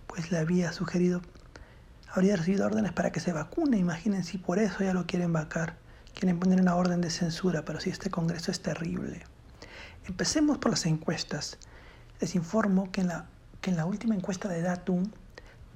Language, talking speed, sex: Spanish, 165 wpm, male